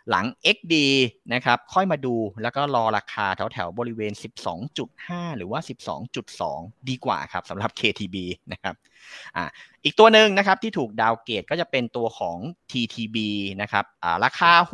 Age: 30-49